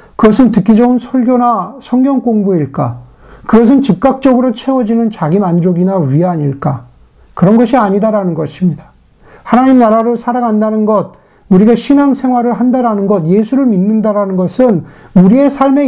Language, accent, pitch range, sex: Korean, native, 185-250 Hz, male